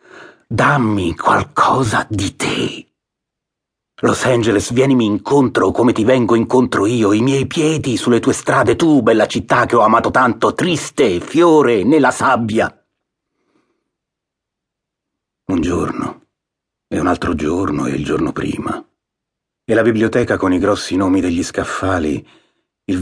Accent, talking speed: native, 130 wpm